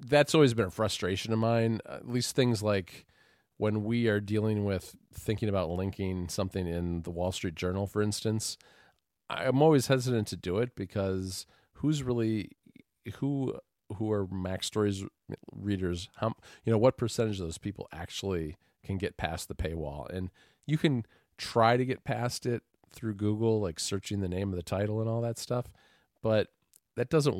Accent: American